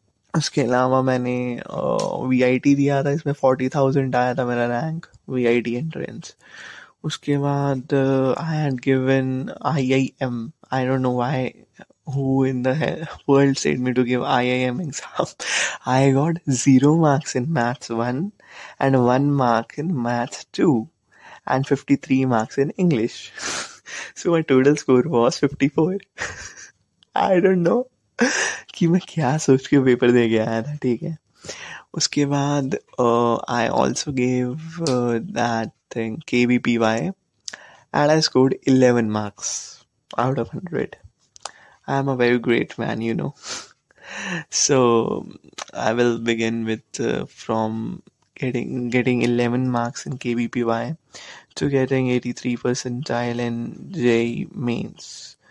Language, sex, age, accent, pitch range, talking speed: Hindi, male, 20-39, native, 120-140 Hz, 135 wpm